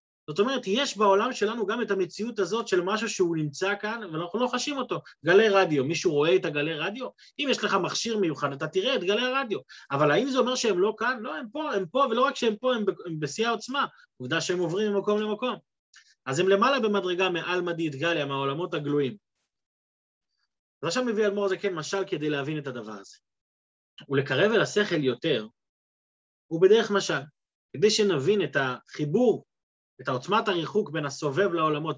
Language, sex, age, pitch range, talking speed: Hebrew, male, 30-49, 155-230 Hz, 180 wpm